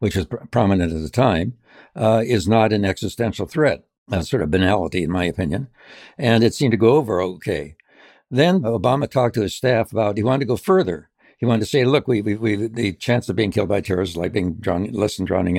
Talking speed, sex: 235 wpm, male